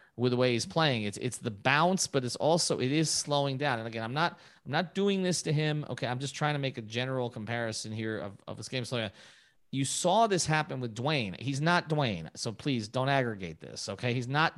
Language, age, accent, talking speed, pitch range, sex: English, 30-49, American, 240 wpm, 115-150 Hz, male